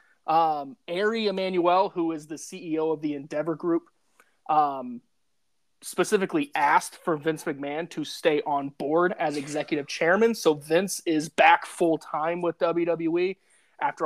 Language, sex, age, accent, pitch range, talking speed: English, male, 30-49, American, 155-190 Hz, 135 wpm